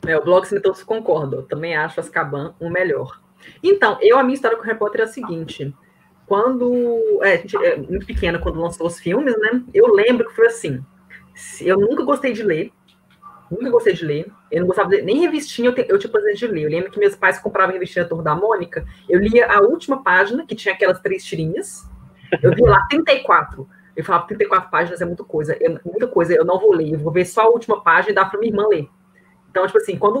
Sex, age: female, 20-39